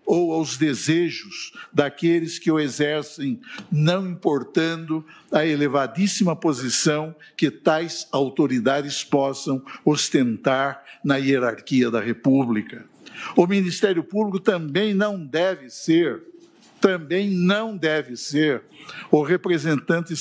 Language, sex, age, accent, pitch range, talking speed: Portuguese, male, 60-79, Brazilian, 150-195 Hz, 100 wpm